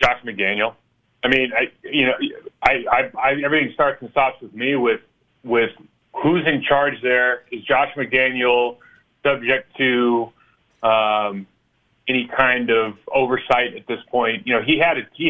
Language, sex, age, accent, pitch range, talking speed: English, male, 30-49, American, 120-150 Hz, 160 wpm